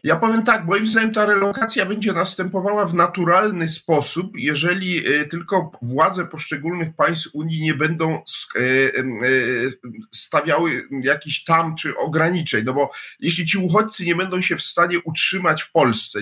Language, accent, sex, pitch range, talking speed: Polish, native, male, 150-190 Hz, 140 wpm